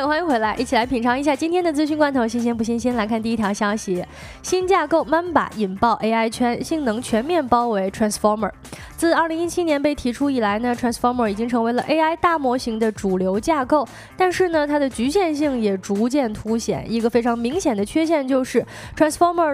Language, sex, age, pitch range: Chinese, female, 20-39, 230-310 Hz